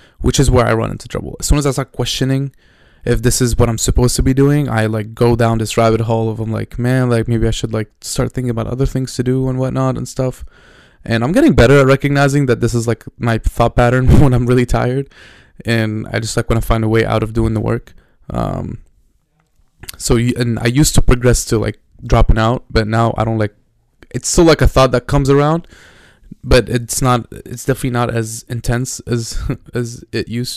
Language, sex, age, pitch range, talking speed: English, male, 20-39, 115-130 Hz, 230 wpm